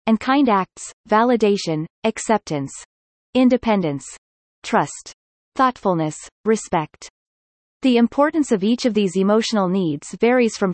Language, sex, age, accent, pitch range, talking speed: English, female, 30-49, American, 180-245 Hz, 105 wpm